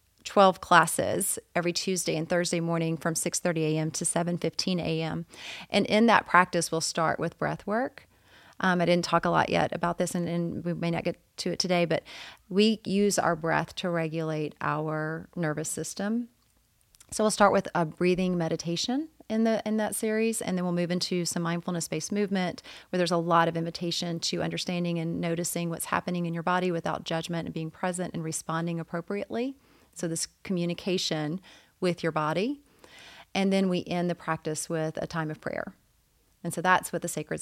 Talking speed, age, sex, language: 185 wpm, 30-49, female, English